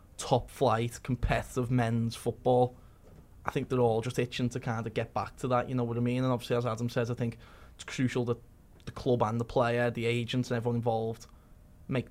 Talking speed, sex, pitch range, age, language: 215 wpm, male, 115-125 Hz, 10-29, English